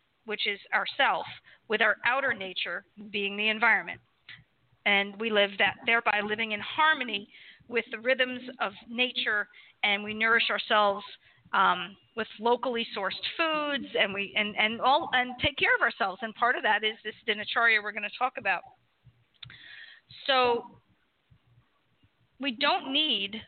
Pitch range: 215-255 Hz